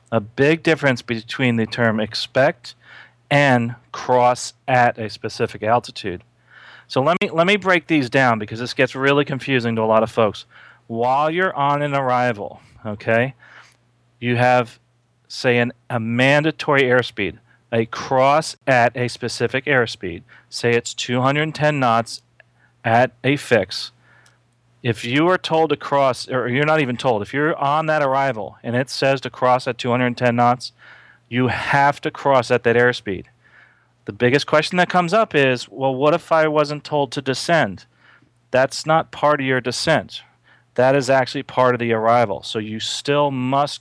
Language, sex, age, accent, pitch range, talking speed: English, male, 40-59, American, 120-145 Hz, 165 wpm